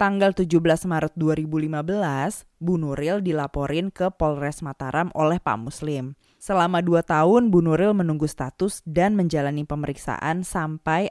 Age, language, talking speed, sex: 20-39, Indonesian, 120 wpm, female